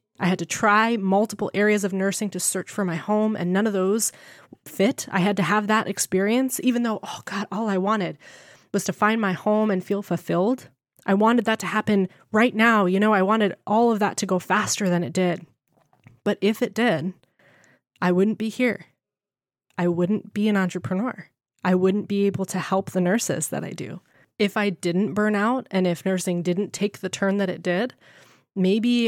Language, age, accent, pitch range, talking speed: English, 20-39, American, 180-210 Hz, 205 wpm